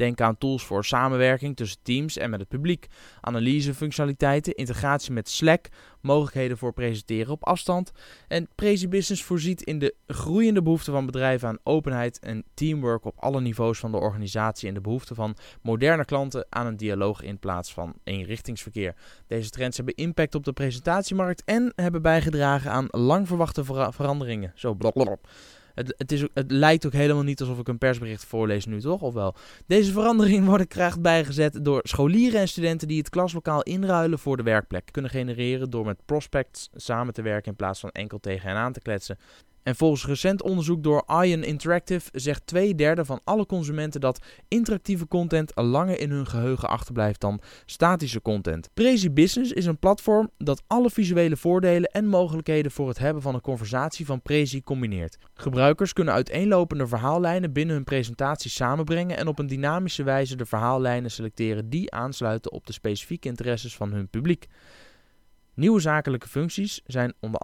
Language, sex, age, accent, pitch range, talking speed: Dutch, male, 20-39, Dutch, 115-165 Hz, 170 wpm